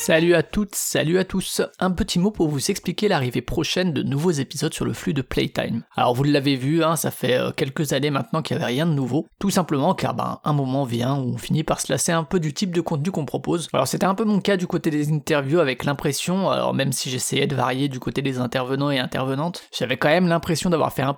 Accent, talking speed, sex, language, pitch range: French, 260 wpm, male, French, 135-170 Hz